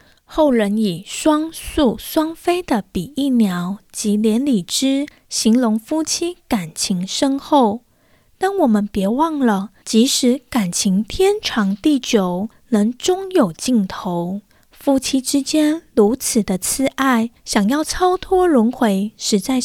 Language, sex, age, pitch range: Chinese, female, 20-39, 210-300 Hz